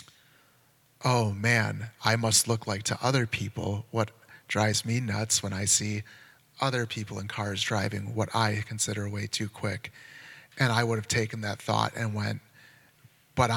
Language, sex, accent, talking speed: English, male, American, 165 wpm